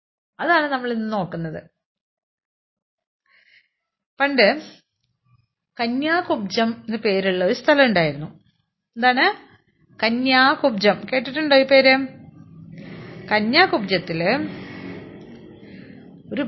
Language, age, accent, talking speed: Malayalam, 30-49, native, 65 wpm